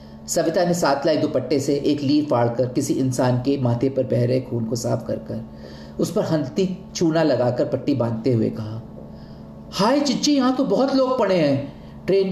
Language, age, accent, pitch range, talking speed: Hindi, 40-59, native, 115-170 Hz, 185 wpm